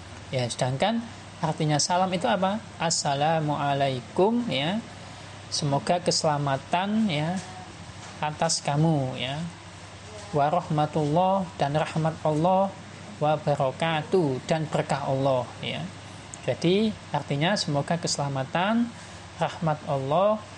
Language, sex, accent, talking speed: Indonesian, male, native, 80 wpm